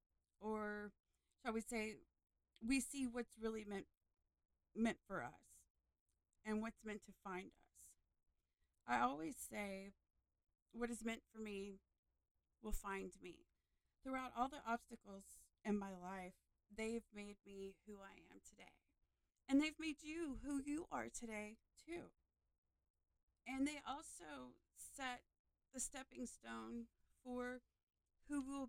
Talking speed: 130 wpm